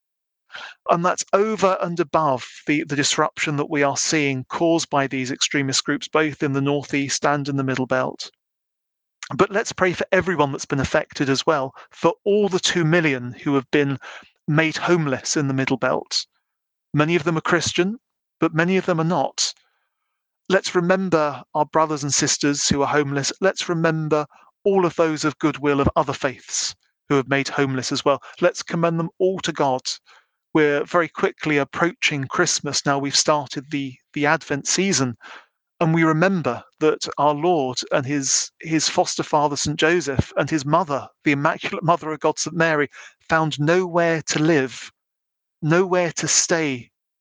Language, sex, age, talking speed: English, male, 40-59, 170 wpm